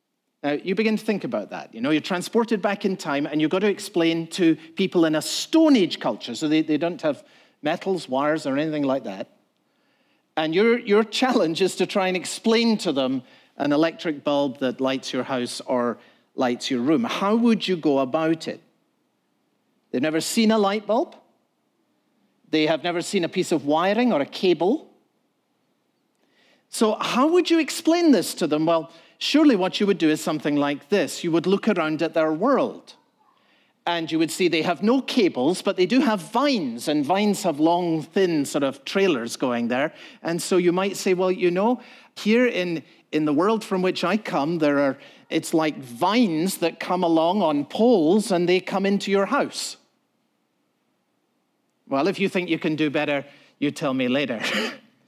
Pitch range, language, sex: 155-220 Hz, English, male